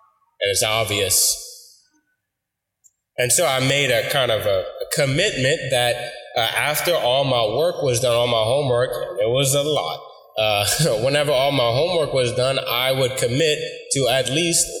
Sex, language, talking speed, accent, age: male, English, 160 wpm, American, 20-39